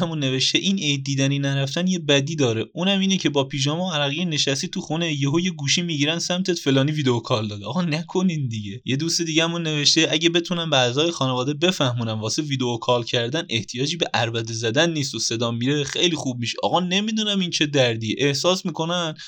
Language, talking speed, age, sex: Persian, 195 wpm, 20-39, male